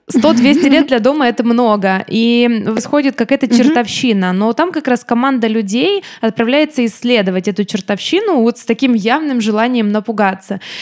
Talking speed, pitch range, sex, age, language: 140 wpm, 215-255 Hz, female, 20-39, Russian